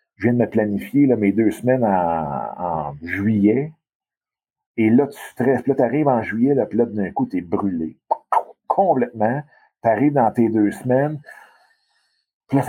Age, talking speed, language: 50-69, 180 wpm, French